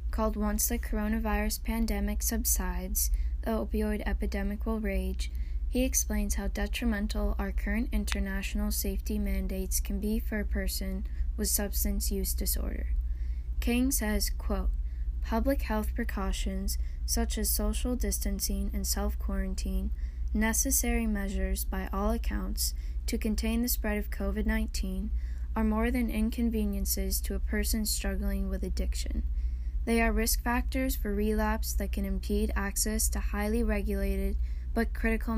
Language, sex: English, female